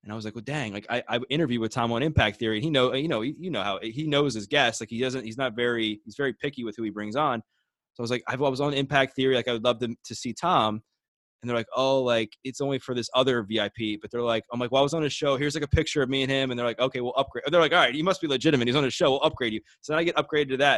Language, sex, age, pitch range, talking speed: English, male, 20-39, 115-145 Hz, 340 wpm